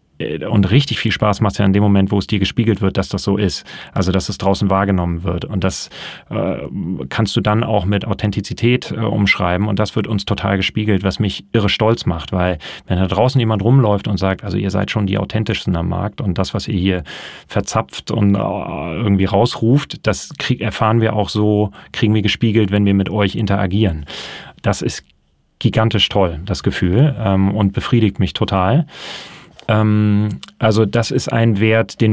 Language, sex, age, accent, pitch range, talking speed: German, male, 30-49, German, 95-110 Hz, 195 wpm